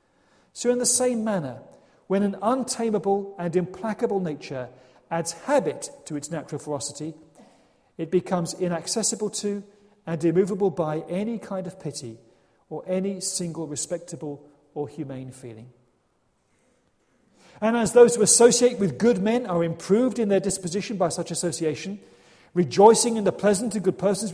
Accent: British